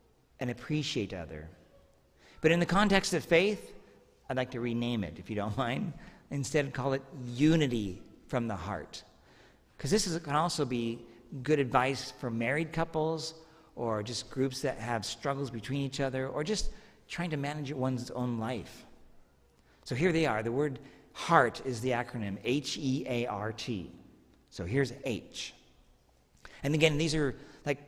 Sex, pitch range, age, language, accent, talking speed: male, 115-150 Hz, 50-69, English, American, 155 wpm